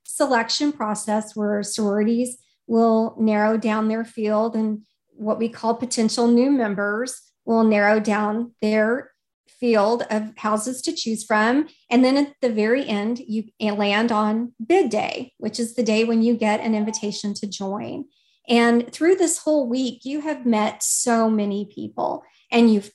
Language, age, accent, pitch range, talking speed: English, 40-59, American, 215-255 Hz, 160 wpm